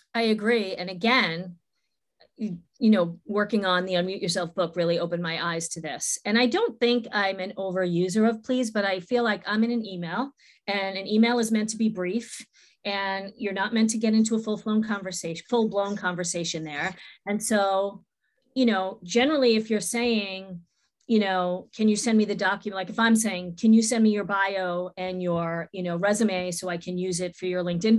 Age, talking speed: 40-59, 210 wpm